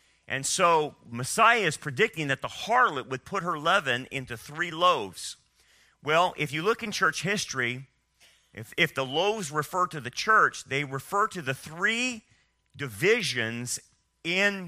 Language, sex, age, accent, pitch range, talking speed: English, male, 40-59, American, 130-190 Hz, 150 wpm